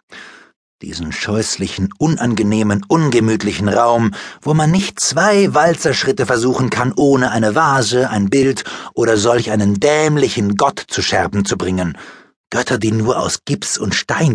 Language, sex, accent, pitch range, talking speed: German, male, German, 105-155 Hz, 140 wpm